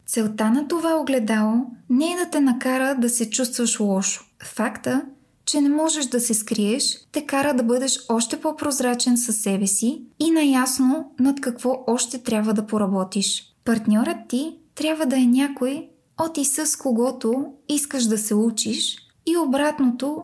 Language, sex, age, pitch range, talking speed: Bulgarian, female, 20-39, 220-280 Hz, 155 wpm